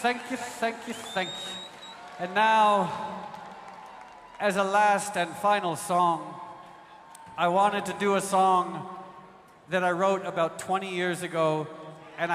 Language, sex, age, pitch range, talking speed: English, male, 50-69, 175-205 Hz, 135 wpm